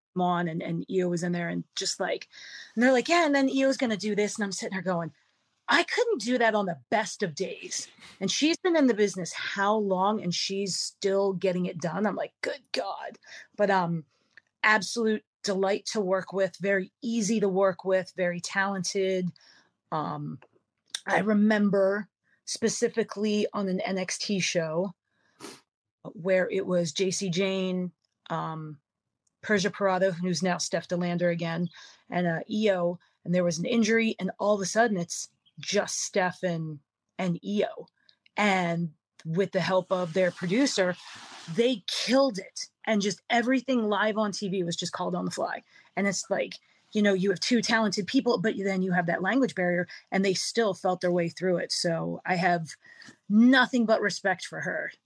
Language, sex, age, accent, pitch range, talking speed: English, female, 30-49, American, 180-215 Hz, 175 wpm